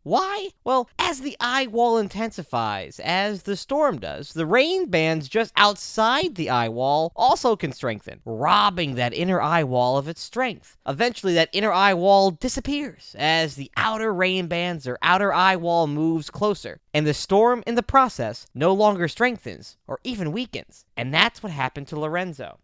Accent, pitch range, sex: American, 140-215 Hz, male